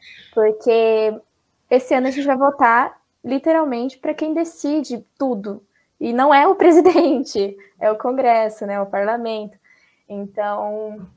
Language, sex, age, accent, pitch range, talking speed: Portuguese, female, 10-29, Brazilian, 210-245 Hz, 130 wpm